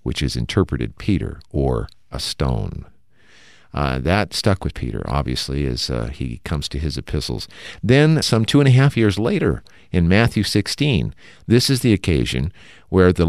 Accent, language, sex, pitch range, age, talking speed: American, English, male, 80-105 Hz, 50-69, 165 wpm